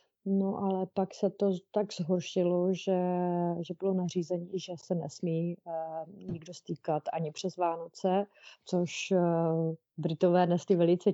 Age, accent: 30-49, native